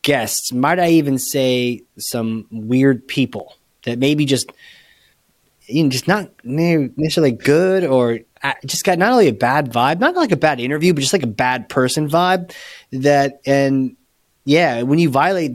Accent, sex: American, male